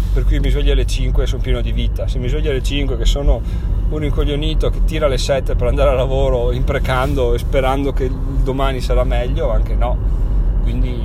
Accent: native